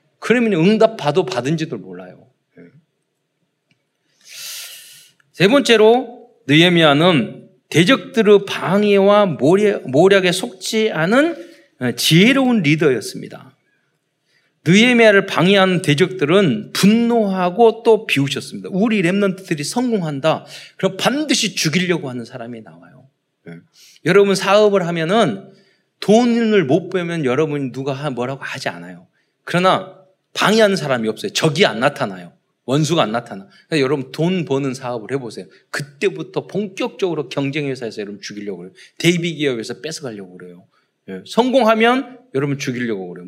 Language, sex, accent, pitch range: Korean, male, native, 145-220 Hz